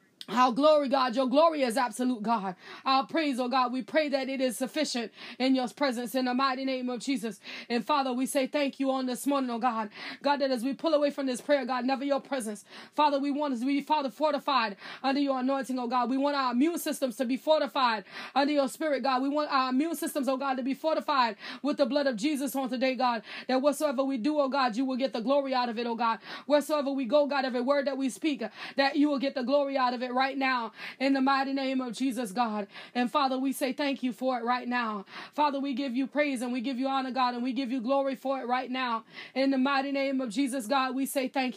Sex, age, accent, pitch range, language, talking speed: female, 20-39, American, 250-275 Hz, English, 260 wpm